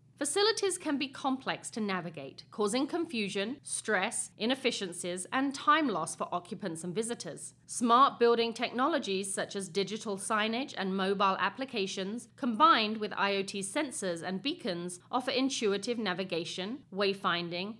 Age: 40-59